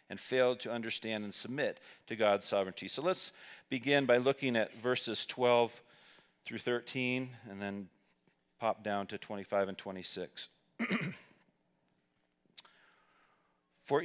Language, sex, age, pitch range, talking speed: English, male, 40-59, 100-125 Hz, 120 wpm